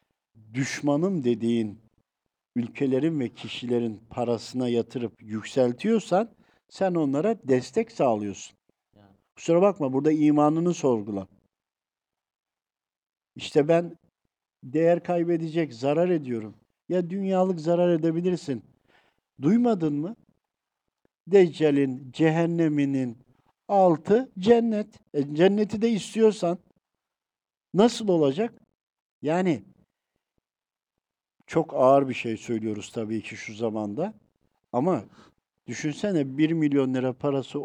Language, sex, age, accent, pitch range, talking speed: Turkish, male, 60-79, native, 120-180 Hz, 90 wpm